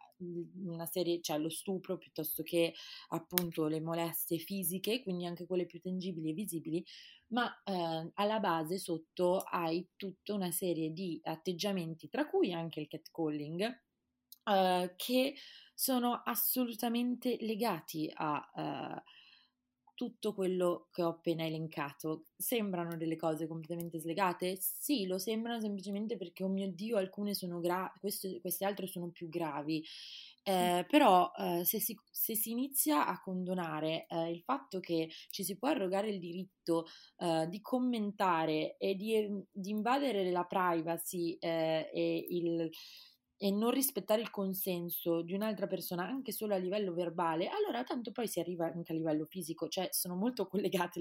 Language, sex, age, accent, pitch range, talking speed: Italian, female, 20-39, native, 165-200 Hz, 150 wpm